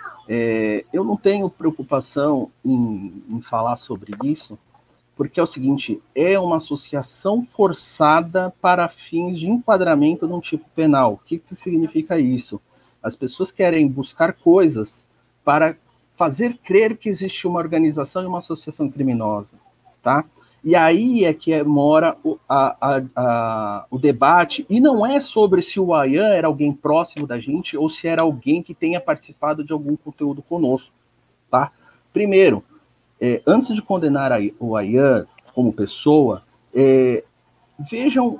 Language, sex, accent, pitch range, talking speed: Portuguese, male, Brazilian, 135-190 Hz, 140 wpm